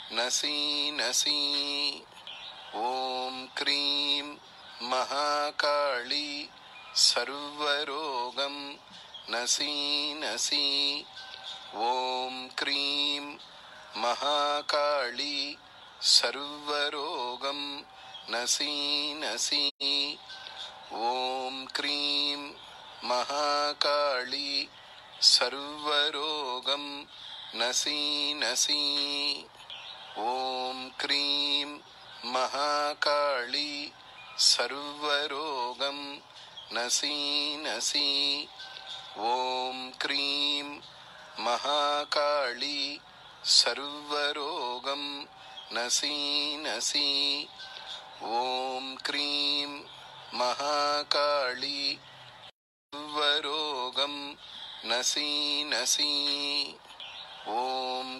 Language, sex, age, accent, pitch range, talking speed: English, male, 30-49, Indian, 140-145 Hz, 35 wpm